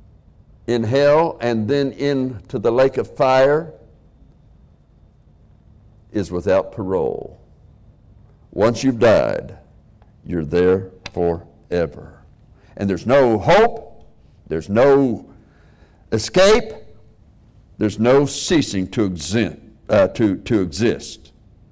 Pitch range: 95-135 Hz